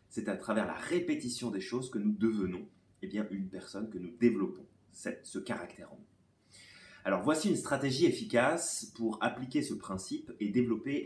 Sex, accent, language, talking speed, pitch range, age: male, French, French, 165 wpm, 105-160 Hz, 30-49